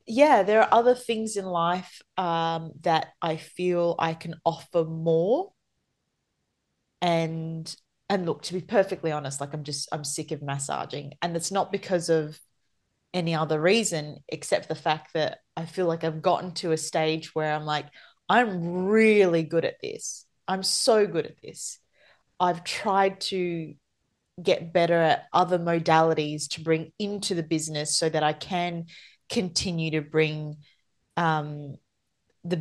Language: English